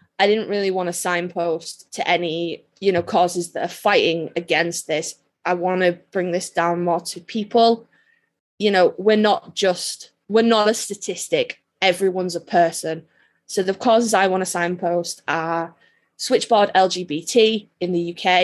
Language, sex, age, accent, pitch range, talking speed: English, female, 20-39, British, 165-190 Hz, 165 wpm